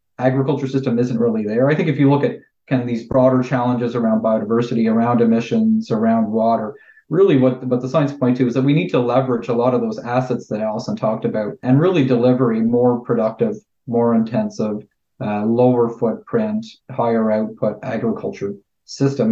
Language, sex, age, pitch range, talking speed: English, male, 40-59, 120-145 Hz, 180 wpm